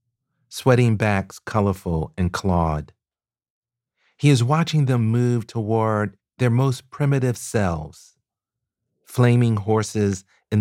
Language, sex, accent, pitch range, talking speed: English, male, American, 90-120 Hz, 100 wpm